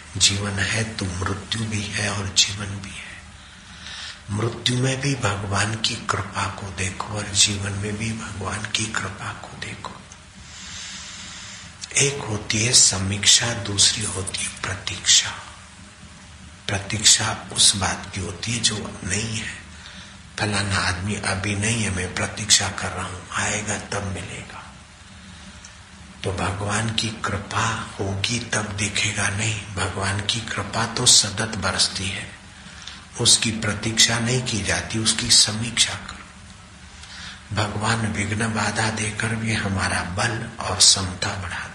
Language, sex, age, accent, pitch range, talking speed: Hindi, male, 60-79, native, 95-110 Hz, 130 wpm